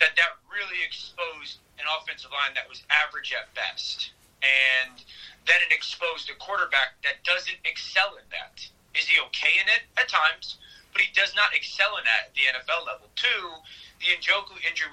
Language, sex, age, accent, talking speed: English, male, 30-49, American, 180 wpm